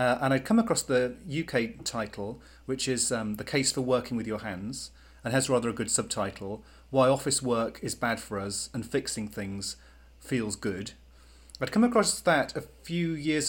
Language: English